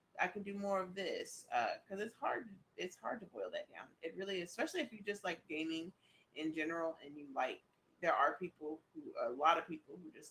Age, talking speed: 30-49, 235 wpm